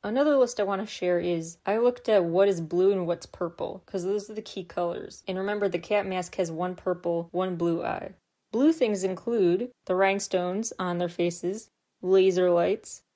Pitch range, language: 175-205 Hz, English